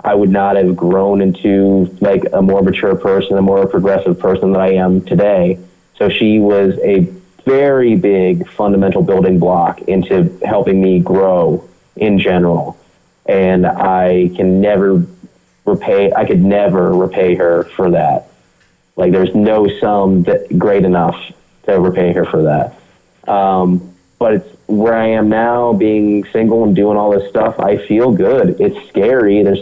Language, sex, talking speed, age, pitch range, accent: English, male, 160 wpm, 30-49, 90-105 Hz, American